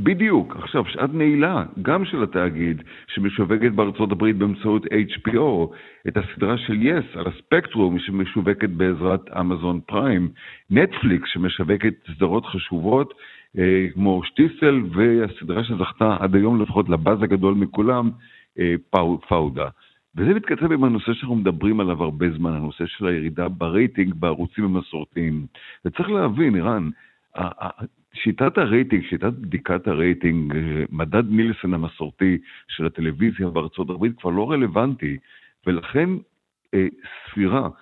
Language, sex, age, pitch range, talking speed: Hebrew, male, 60-79, 85-105 Hz, 120 wpm